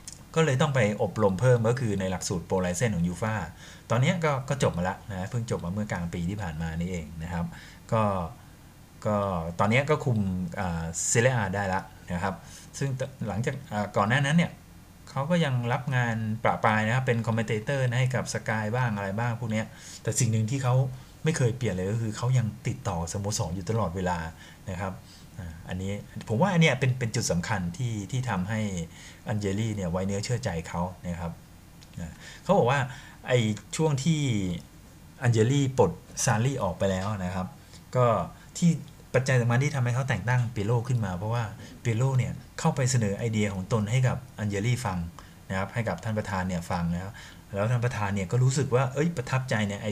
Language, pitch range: Thai, 95-125 Hz